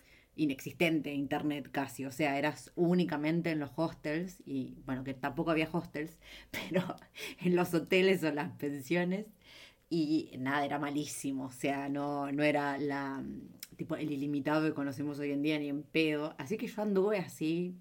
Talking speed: 165 wpm